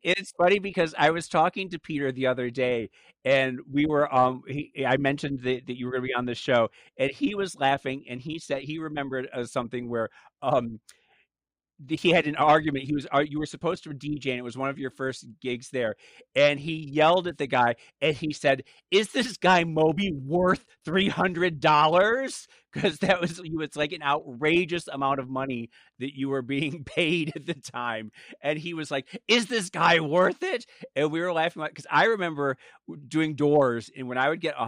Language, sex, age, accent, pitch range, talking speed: English, male, 40-59, American, 130-165 Hz, 210 wpm